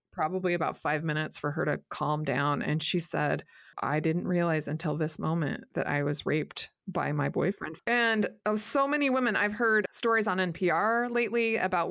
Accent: American